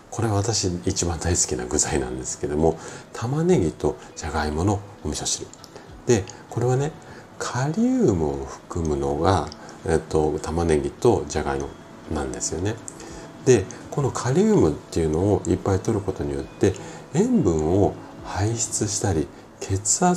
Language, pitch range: Japanese, 75-105 Hz